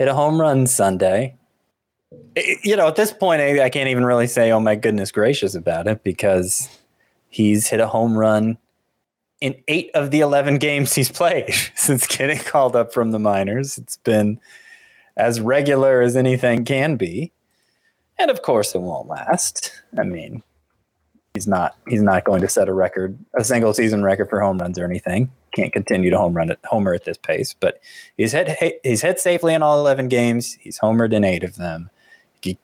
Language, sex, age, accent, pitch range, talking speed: English, male, 20-39, American, 100-150 Hz, 190 wpm